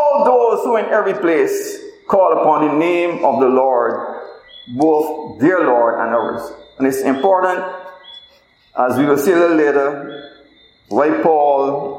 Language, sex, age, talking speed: English, male, 50-69, 145 wpm